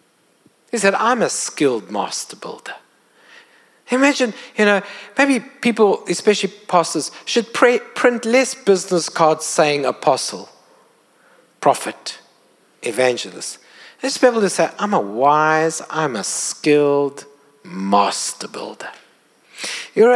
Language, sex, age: English, male, 60-79